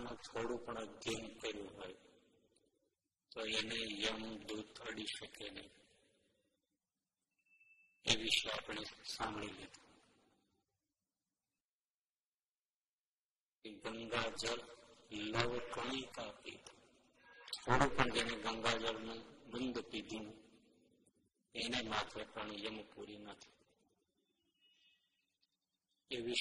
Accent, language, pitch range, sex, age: native, Gujarati, 105-120 Hz, male, 50-69